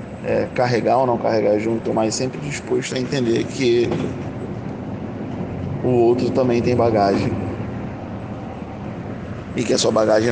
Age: 20-39